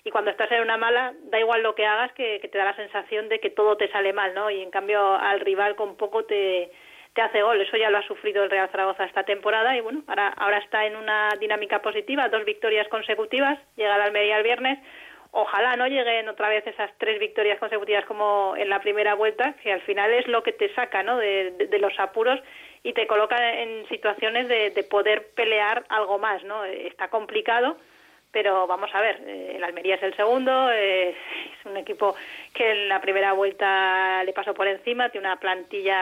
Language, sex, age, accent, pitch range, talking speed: Spanish, female, 20-39, Spanish, 195-225 Hz, 215 wpm